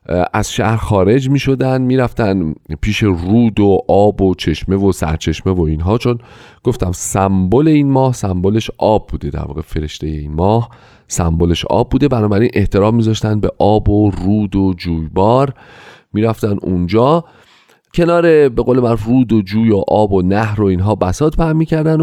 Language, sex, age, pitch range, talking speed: Persian, male, 40-59, 90-125 Hz, 165 wpm